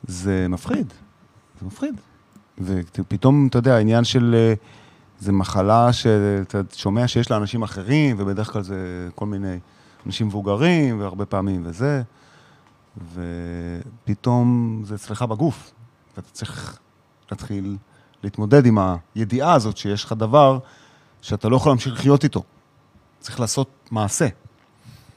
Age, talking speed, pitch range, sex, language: 30-49, 120 wpm, 100-130 Hz, male, Hebrew